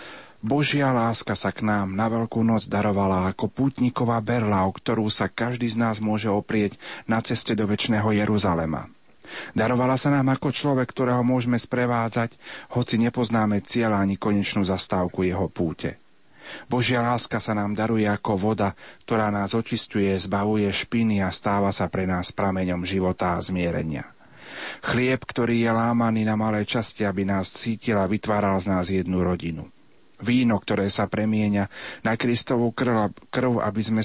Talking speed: 155 wpm